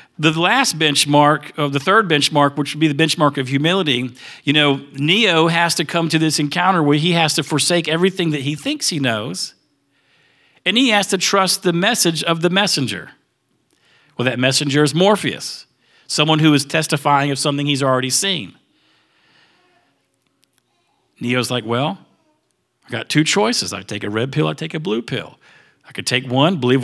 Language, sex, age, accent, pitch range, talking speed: English, male, 50-69, American, 145-185 Hz, 175 wpm